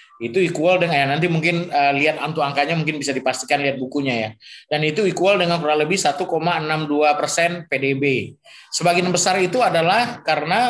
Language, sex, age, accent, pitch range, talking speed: Indonesian, male, 20-39, native, 140-175 Hz, 165 wpm